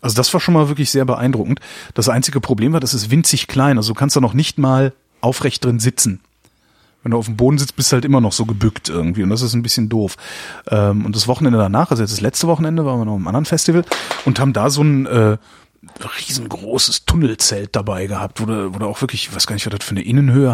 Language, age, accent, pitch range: German, 30-49, German, 110-145 Hz